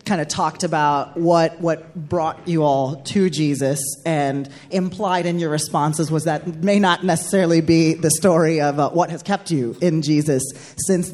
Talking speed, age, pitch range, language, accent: 180 wpm, 20-39, 145-170 Hz, English, American